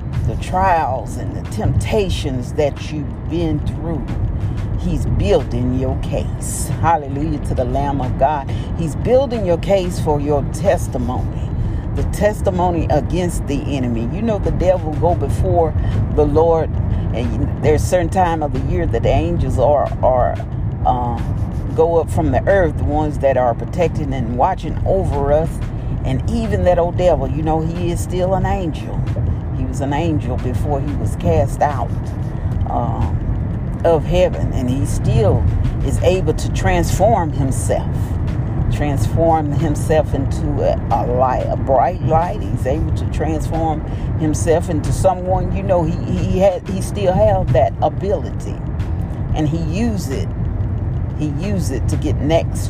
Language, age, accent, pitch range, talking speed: English, 40-59, American, 105-135 Hz, 150 wpm